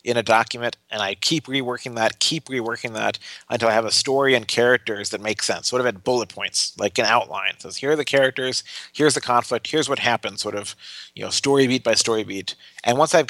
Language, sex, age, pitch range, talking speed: English, male, 30-49, 115-140 Hz, 235 wpm